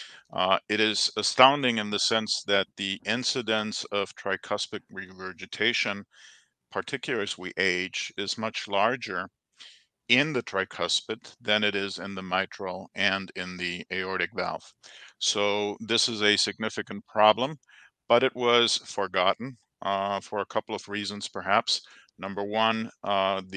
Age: 50-69